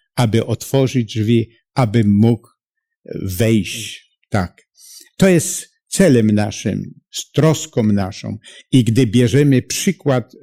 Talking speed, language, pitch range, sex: 100 wpm, Polish, 110-140 Hz, male